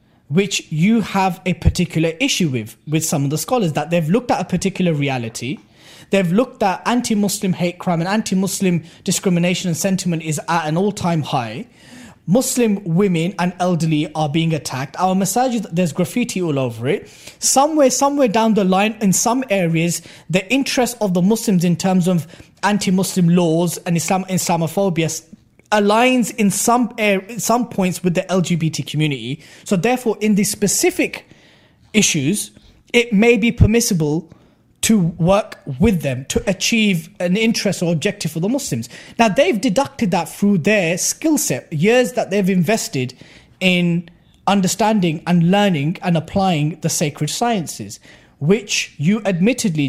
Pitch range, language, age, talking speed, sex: 165-210 Hz, English, 20-39, 155 wpm, male